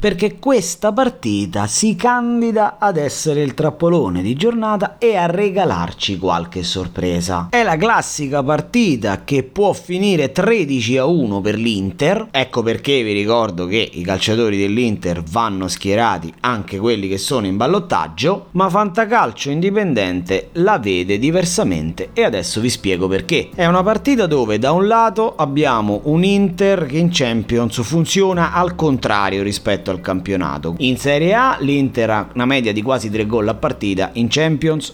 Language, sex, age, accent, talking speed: Italian, male, 30-49, native, 155 wpm